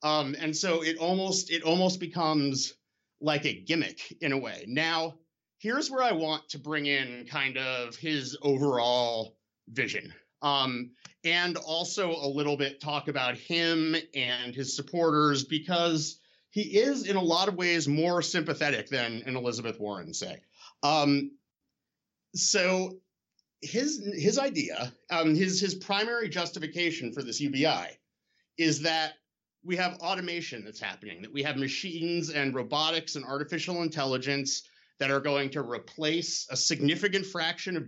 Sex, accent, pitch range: male, American, 140-170 Hz